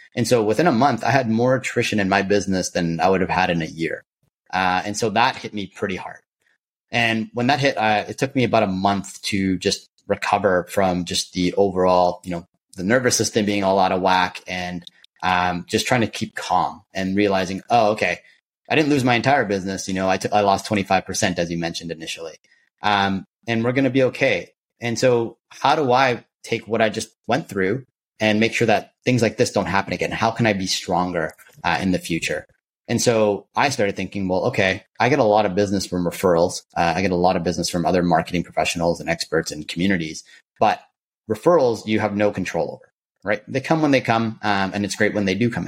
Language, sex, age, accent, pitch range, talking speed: English, male, 30-49, American, 90-110 Hz, 225 wpm